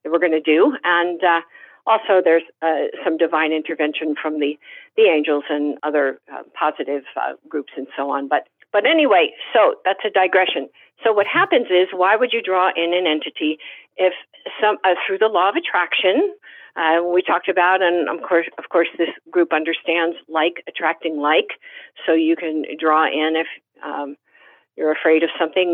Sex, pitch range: female, 160-190 Hz